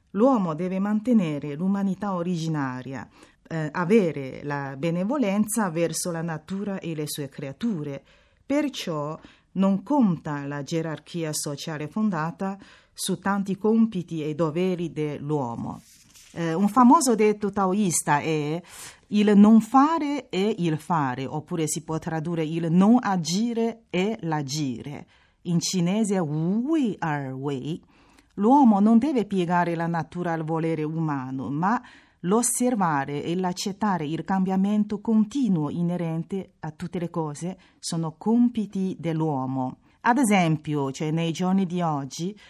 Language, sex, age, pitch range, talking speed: Italian, female, 40-59, 155-200 Hz, 125 wpm